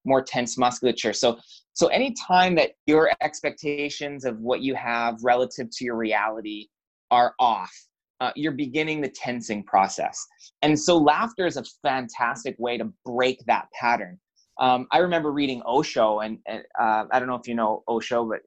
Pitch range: 120-155 Hz